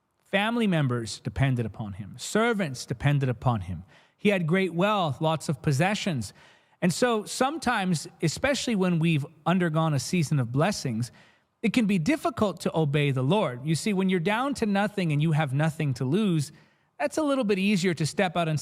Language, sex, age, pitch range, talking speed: English, male, 30-49, 155-215 Hz, 185 wpm